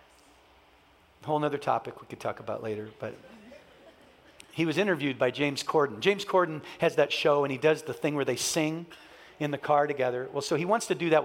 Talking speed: 210 wpm